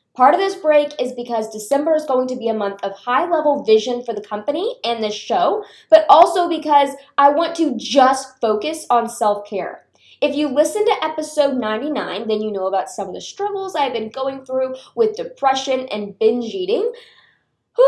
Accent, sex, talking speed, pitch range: American, female, 190 wpm, 210-295 Hz